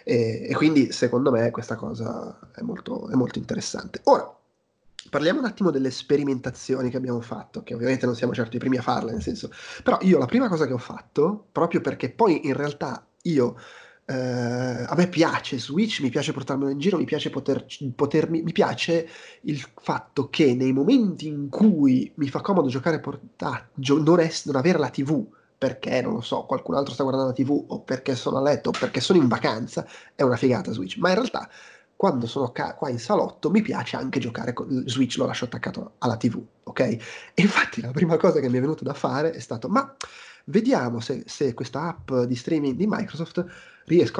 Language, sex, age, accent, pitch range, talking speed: Italian, male, 30-49, native, 130-170 Hz, 200 wpm